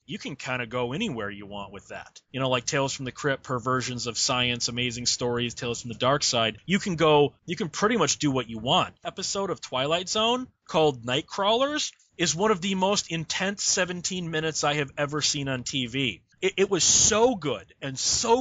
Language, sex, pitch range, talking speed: English, male, 130-180 Hz, 210 wpm